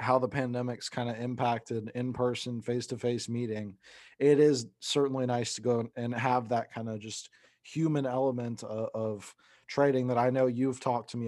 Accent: American